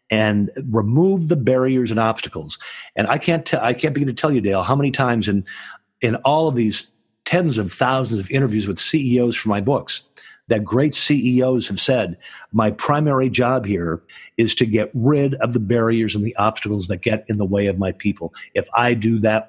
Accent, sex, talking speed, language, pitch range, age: American, male, 205 wpm, English, 110-140 Hz, 50-69